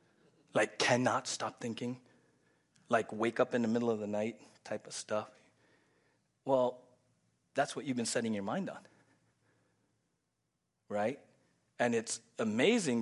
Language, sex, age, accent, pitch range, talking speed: English, male, 30-49, American, 110-150 Hz, 135 wpm